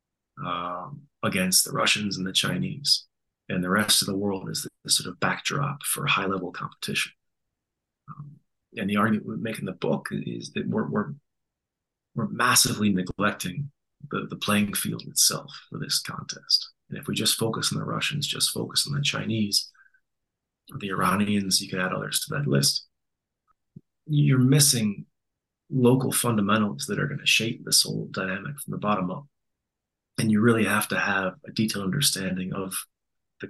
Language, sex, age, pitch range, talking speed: English, male, 30-49, 100-145 Hz, 170 wpm